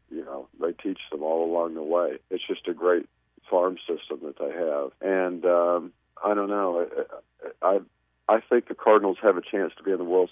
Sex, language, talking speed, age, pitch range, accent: male, English, 215 wpm, 50-69, 80-105 Hz, American